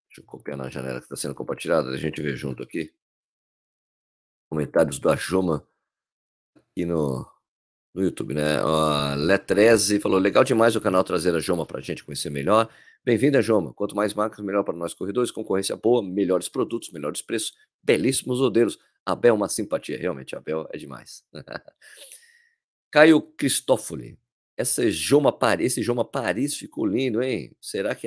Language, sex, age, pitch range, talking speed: Portuguese, male, 50-69, 90-115 Hz, 160 wpm